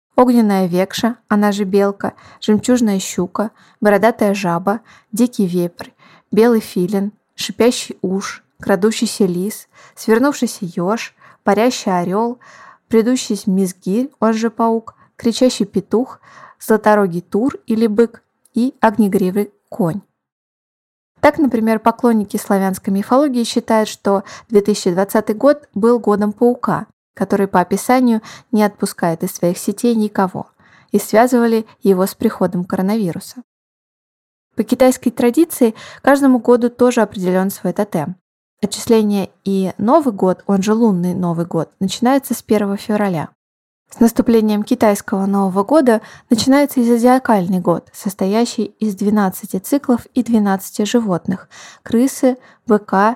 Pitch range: 195-235 Hz